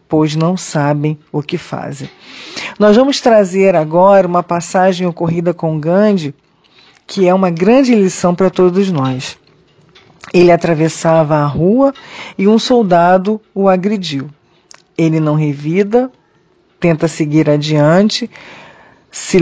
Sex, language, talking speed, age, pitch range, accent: female, Portuguese, 120 wpm, 40-59, 165-205 Hz, Brazilian